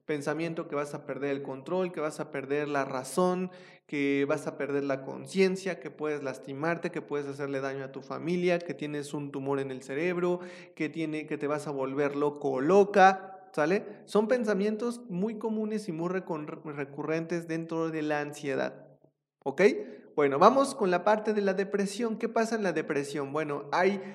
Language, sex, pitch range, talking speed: Spanish, male, 145-180 Hz, 180 wpm